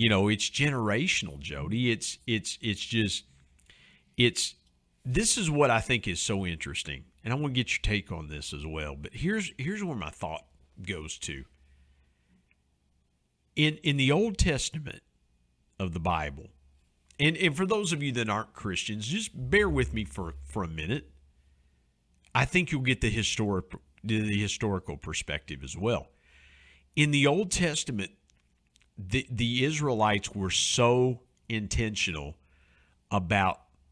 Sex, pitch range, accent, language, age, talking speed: male, 75-120 Hz, American, English, 50-69, 150 wpm